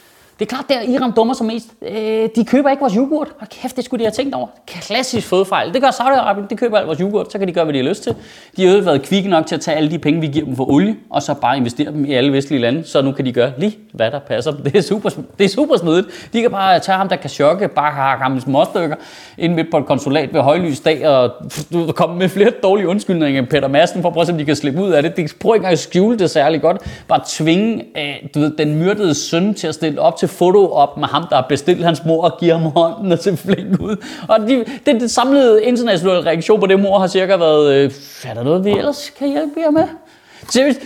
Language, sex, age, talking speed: Danish, male, 30-49, 260 wpm